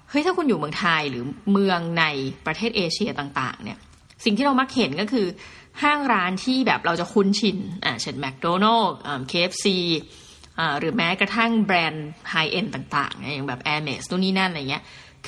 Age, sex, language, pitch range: 20-39, female, Thai, 175-230 Hz